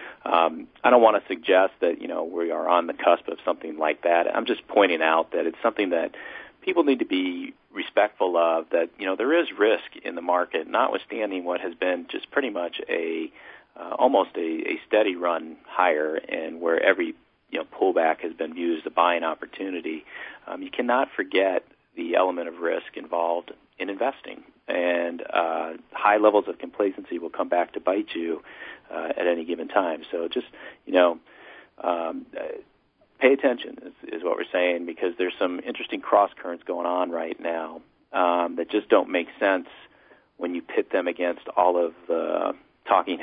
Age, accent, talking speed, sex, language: 40-59, American, 185 wpm, male, English